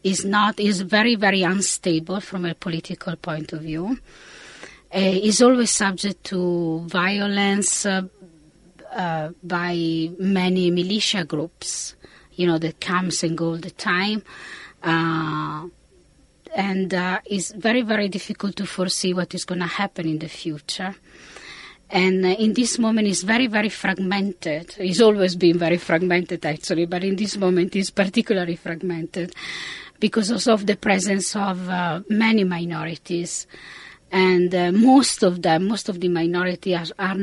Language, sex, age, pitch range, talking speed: English, female, 20-39, 170-200 Hz, 145 wpm